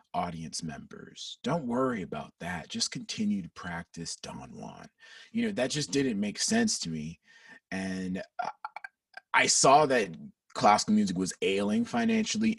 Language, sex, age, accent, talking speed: English, male, 30-49, American, 145 wpm